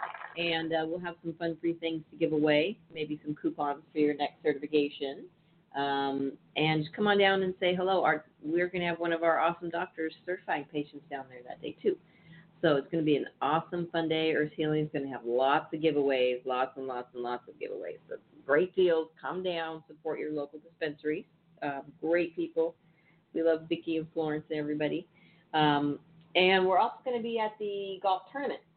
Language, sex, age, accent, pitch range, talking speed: English, female, 40-59, American, 145-170 Hz, 210 wpm